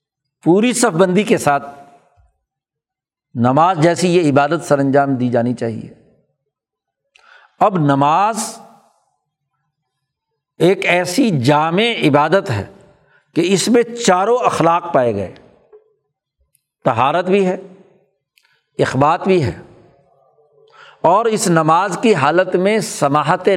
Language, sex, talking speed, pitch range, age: Urdu, male, 105 wpm, 150-205 Hz, 60-79